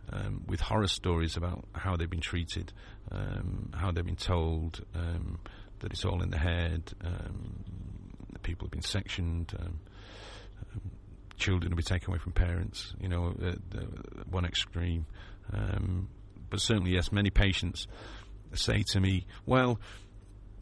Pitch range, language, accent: 85-100 Hz, English, British